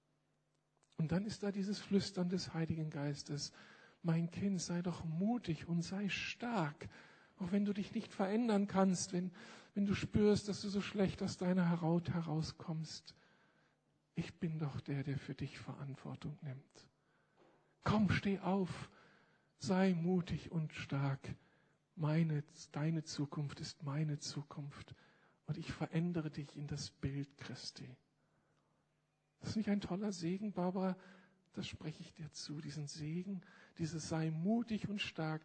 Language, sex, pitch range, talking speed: German, male, 150-190 Hz, 140 wpm